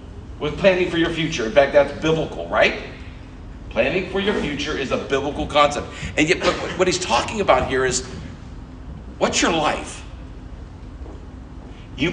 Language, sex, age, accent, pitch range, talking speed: English, male, 50-69, American, 85-140 Hz, 150 wpm